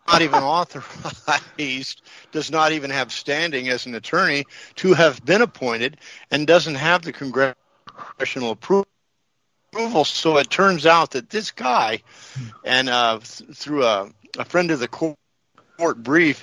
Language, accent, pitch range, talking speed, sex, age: English, American, 130-175 Hz, 145 wpm, male, 50-69